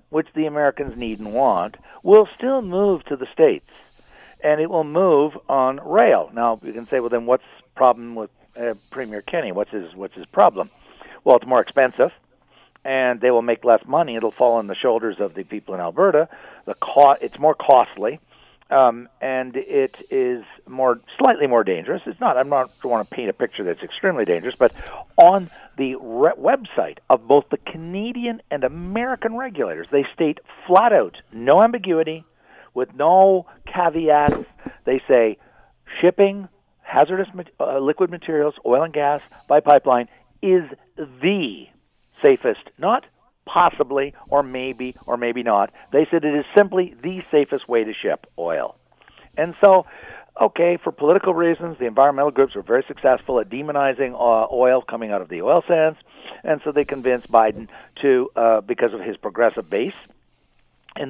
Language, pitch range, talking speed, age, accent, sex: English, 125-185 Hz, 165 wpm, 60-79, American, male